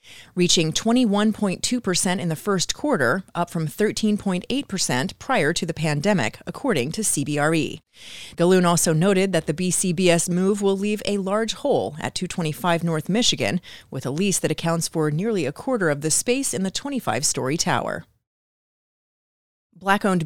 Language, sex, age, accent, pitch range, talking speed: English, female, 30-49, American, 155-205 Hz, 150 wpm